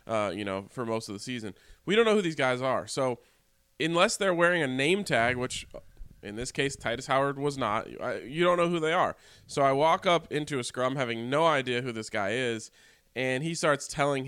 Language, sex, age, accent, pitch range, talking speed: English, male, 20-39, American, 120-160 Hz, 225 wpm